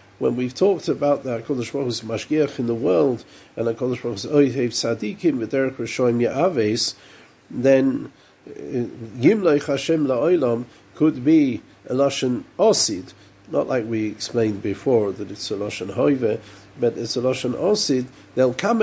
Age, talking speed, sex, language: 50-69, 155 wpm, male, English